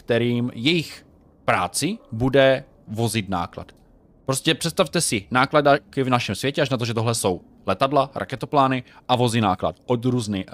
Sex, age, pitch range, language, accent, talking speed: male, 20-39, 110-145 Hz, Czech, native, 150 wpm